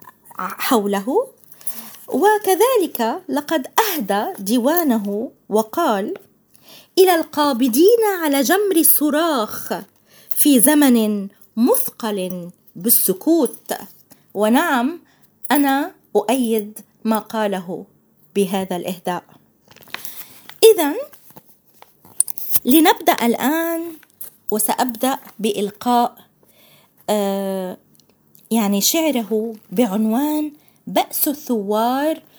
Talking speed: 60 wpm